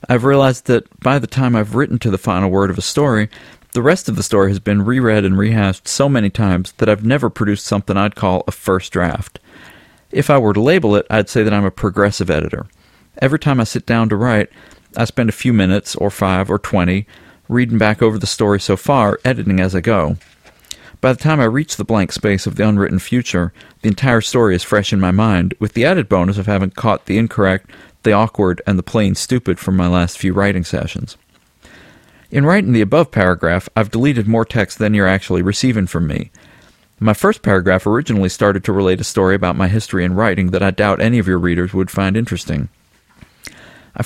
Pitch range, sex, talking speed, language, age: 95-115 Hz, male, 215 wpm, English, 40-59